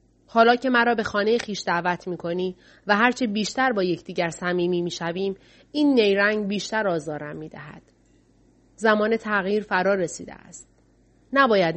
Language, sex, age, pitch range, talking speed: Persian, female, 30-49, 170-215 Hz, 155 wpm